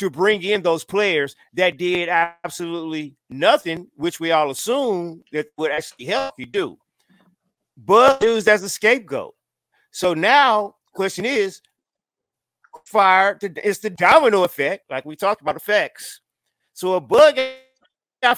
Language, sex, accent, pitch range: English, male, American, 155-210 Hz